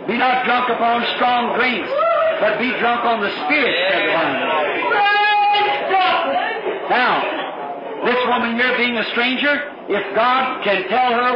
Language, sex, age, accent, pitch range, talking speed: English, male, 50-69, American, 220-285 Hz, 130 wpm